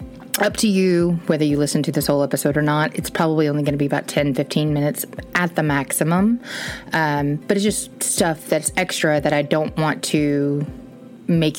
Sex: female